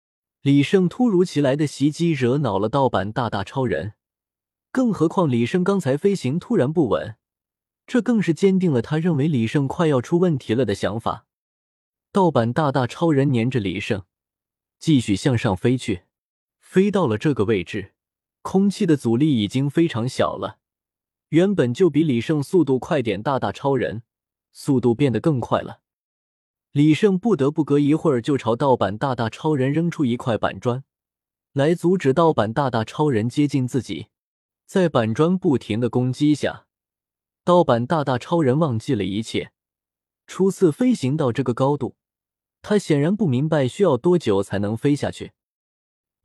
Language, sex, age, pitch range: Chinese, male, 20-39, 115-165 Hz